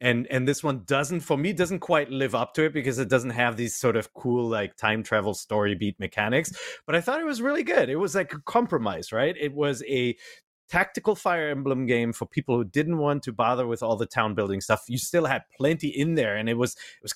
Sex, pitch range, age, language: male, 110-145 Hz, 30-49, English